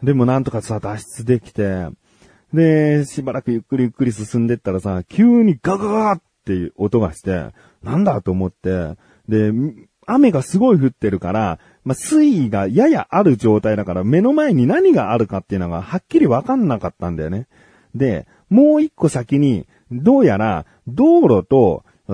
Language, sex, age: Japanese, male, 40-59